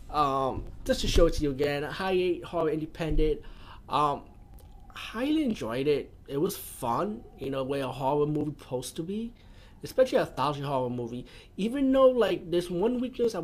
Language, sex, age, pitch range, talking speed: English, male, 20-39, 120-160 Hz, 180 wpm